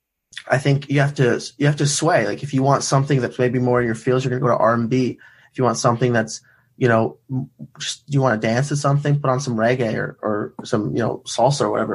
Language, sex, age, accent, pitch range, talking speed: English, male, 20-39, American, 120-135 Hz, 265 wpm